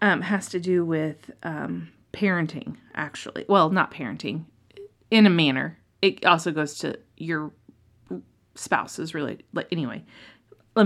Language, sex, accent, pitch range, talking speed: English, female, American, 165-215 Hz, 140 wpm